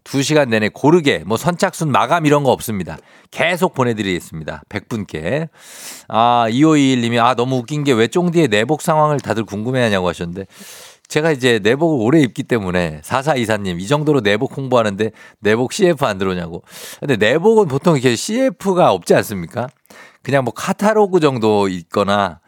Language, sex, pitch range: Korean, male, 105-160 Hz